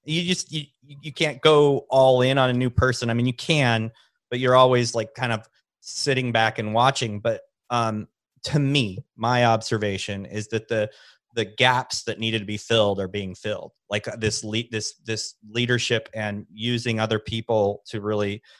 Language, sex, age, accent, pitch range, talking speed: English, male, 30-49, American, 110-130 Hz, 185 wpm